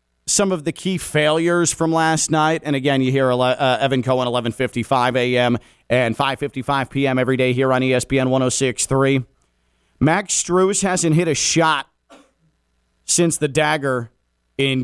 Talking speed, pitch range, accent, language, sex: 145 wpm, 105-175 Hz, American, English, male